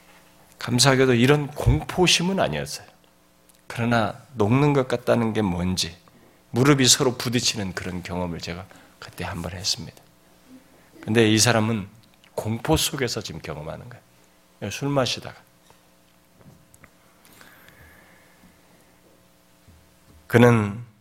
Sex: male